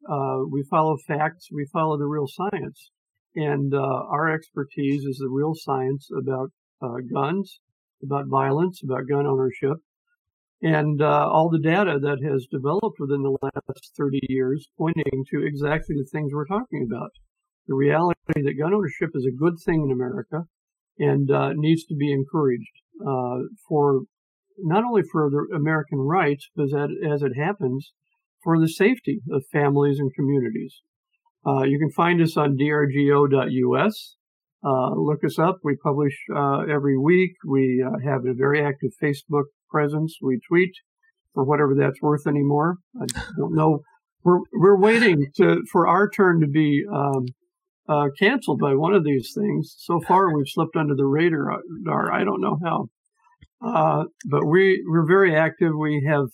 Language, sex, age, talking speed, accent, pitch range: English, male, 50-69, 165 wpm, American, 140-170 Hz